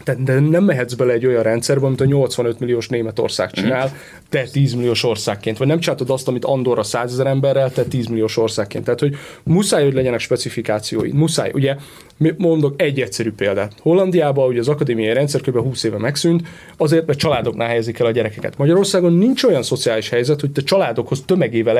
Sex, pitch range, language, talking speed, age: male, 125-165 Hz, Hungarian, 185 wpm, 30-49